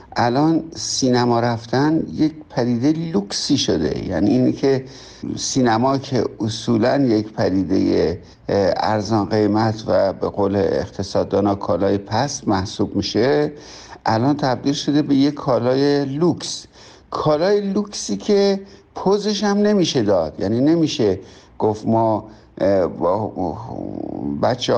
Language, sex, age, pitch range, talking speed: Persian, male, 60-79, 110-160 Hz, 105 wpm